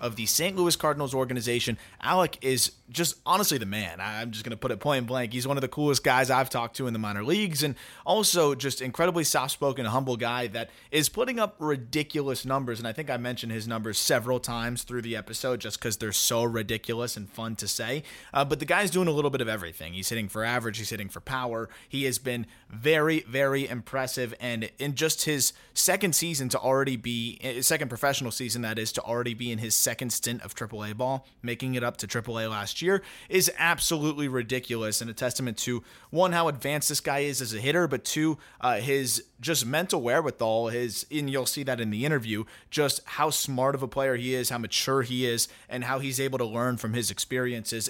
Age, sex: 20-39, male